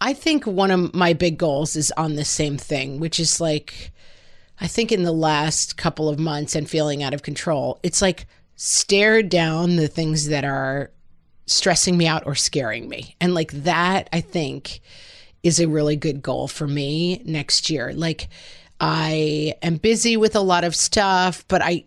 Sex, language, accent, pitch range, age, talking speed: female, English, American, 150-180 Hz, 30-49, 185 wpm